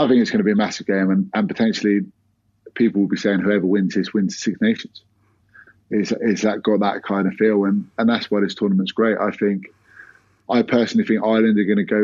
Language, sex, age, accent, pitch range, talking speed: English, male, 30-49, British, 100-115 Hz, 235 wpm